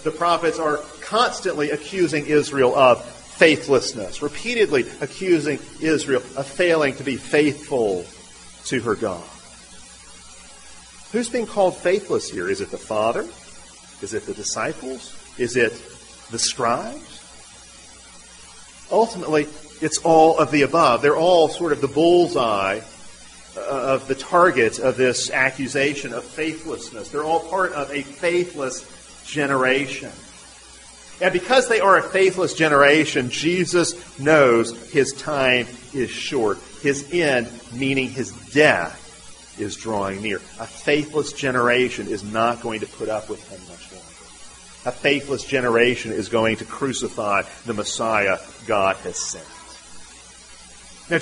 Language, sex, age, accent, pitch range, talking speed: English, male, 40-59, American, 135-175 Hz, 130 wpm